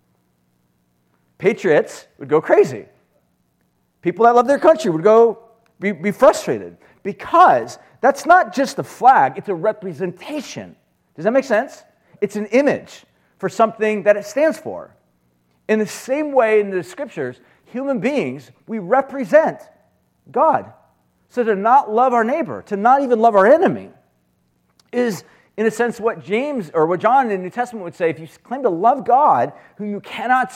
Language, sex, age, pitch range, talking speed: English, male, 40-59, 165-245 Hz, 165 wpm